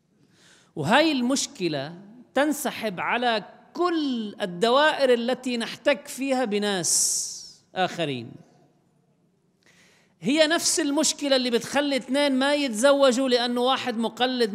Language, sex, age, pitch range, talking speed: Arabic, male, 40-59, 165-255 Hz, 90 wpm